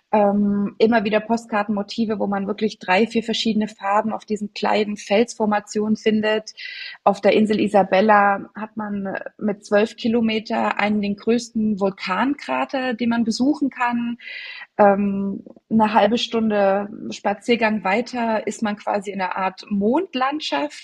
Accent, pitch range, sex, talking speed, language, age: German, 200-240 Hz, female, 130 wpm, German, 20-39